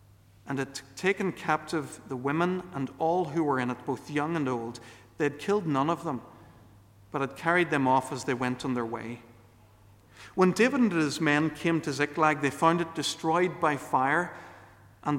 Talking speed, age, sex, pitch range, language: 190 wpm, 50-69, male, 105-150 Hz, English